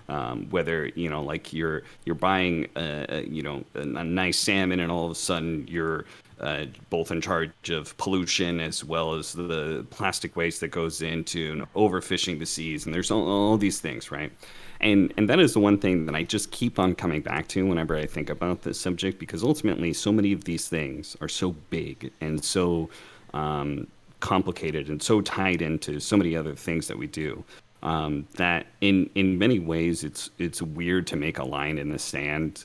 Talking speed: 200 wpm